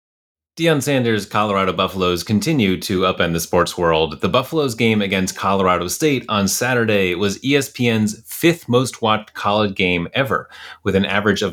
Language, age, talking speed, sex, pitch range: English, 30-49, 155 wpm, male, 95-125 Hz